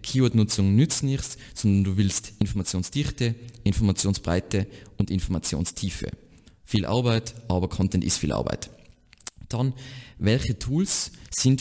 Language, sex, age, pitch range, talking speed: German, male, 20-39, 90-120 Hz, 110 wpm